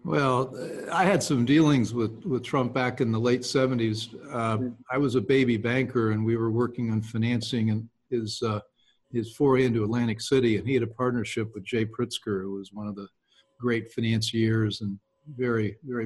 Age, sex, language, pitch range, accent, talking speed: 50-69, male, English, 110-130 Hz, American, 185 wpm